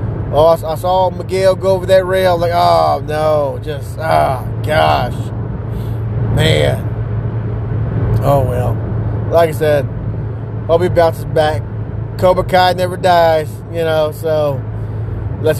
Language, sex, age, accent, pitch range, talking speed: English, male, 20-39, American, 110-165 Hz, 130 wpm